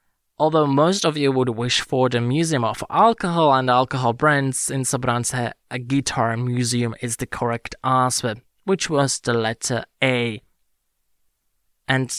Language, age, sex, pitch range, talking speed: English, 20-39, male, 120-150 Hz, 145 wpm